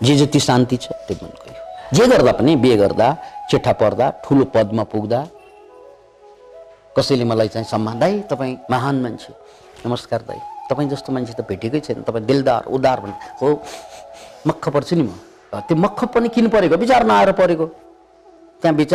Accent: Indian